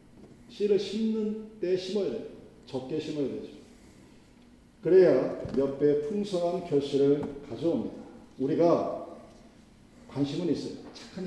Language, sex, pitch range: Korean, male, 125-160 Hz